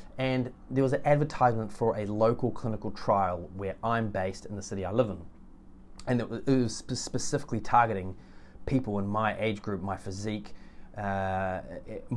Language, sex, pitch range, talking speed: English, male, 95-120 Hz, 160 wpm